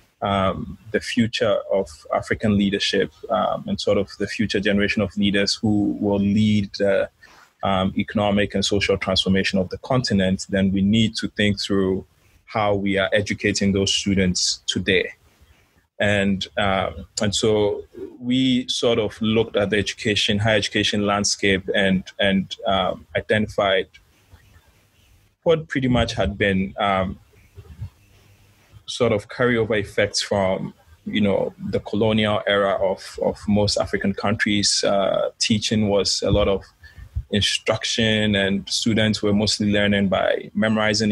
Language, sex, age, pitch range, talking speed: English, male, 20-39, 100-110 Hz, 135 wpm